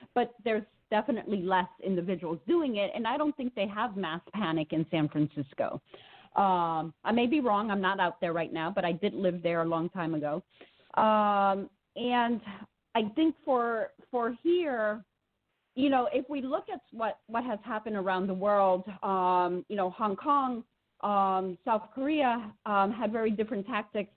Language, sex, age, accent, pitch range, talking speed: English, female, 40-59, American, 185-245 Hz, 175 wpm